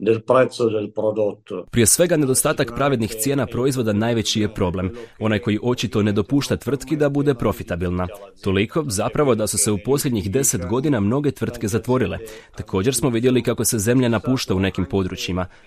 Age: 30-49